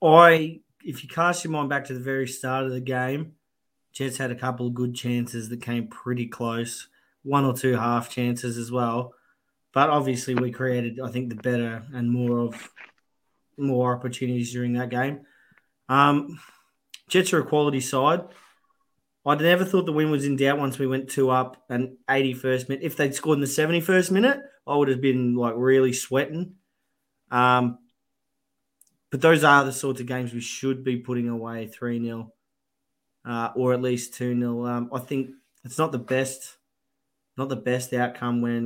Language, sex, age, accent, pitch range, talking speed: English, male, 20-39, Australian, 120-135 Hz, 180 wpm